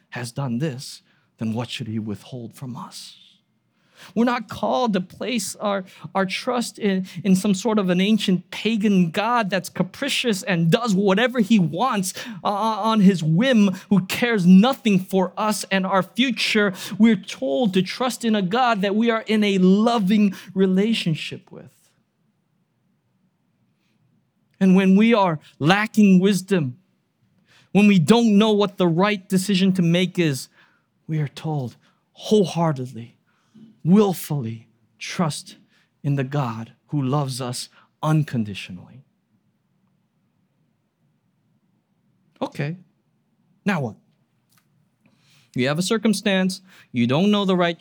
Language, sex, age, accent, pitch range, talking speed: English, male, 50-69, American, 160-205 Hz, 130 wpm